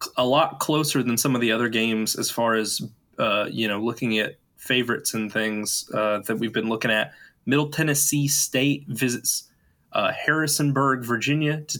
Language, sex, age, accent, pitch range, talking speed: English, male, 20-39, American, 110-135 Hz, 175 wpm